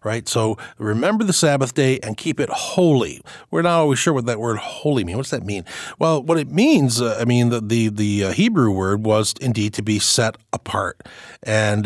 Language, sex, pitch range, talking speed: English, male, 105-135 Hz, 210 wpm